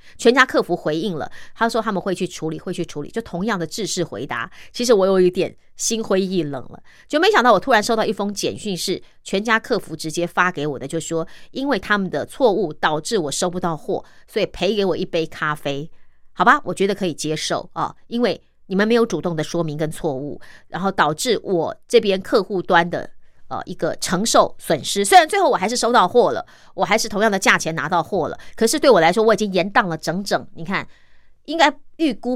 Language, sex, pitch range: Chinese, female, 165-225 Hz